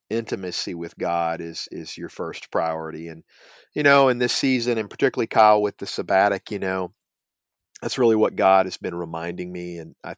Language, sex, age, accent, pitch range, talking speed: English, male, 50-69, American, 90-110 Hz, 190 wpm